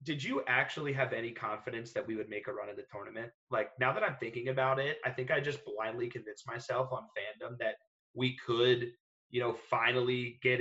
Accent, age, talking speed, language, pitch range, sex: American, 30-49, 215 wpm, English, 115-140 Hz, male